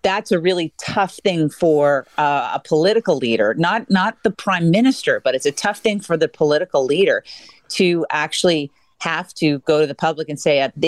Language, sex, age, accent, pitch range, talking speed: English, female, 40-59, American, 145-185 Hz, 195 wpm